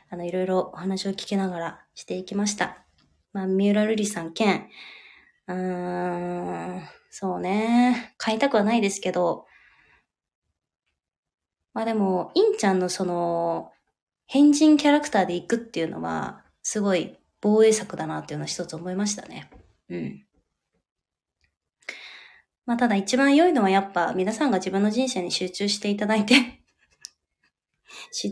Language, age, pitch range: Japanese, 20-39, 185-235 Hz